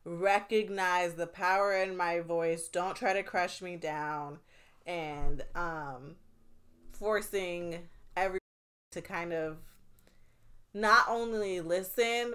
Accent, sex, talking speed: American, female, 105 wpm